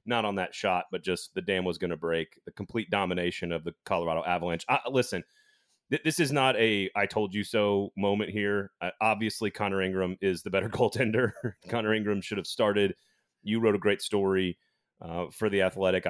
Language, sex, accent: English, male, American